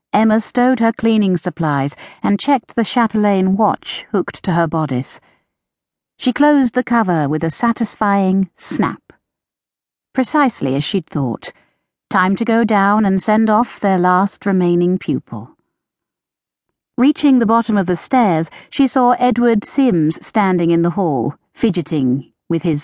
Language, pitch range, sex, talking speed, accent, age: English, 165-235 Hz, female, 140 wpm, British, 50-69